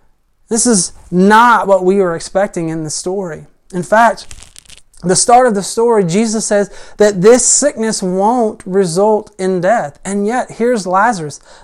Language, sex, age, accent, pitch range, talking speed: English, male, 30-49, American, 175-220 Hz, 155 wpm